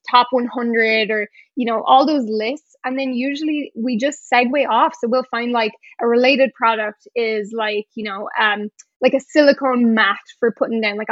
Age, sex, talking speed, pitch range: 10-29, female, 190 wpm, 225-270 Hz